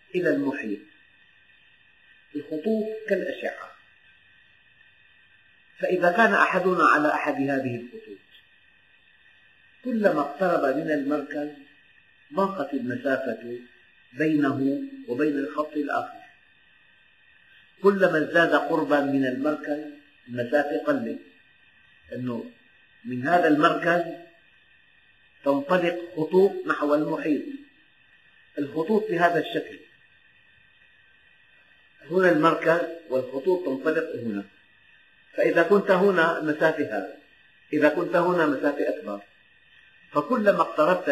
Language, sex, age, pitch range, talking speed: Arabic, male, 50-69, 145-190 Hz, 80 wpm